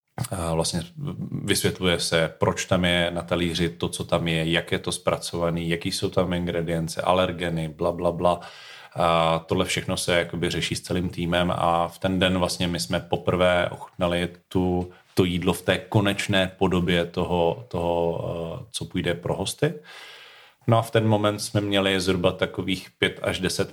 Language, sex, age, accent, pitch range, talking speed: Czech, male, 30-49, native, 85-90 Hz, 165 wpm